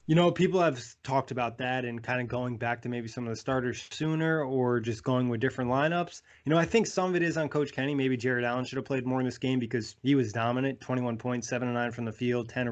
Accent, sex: American, male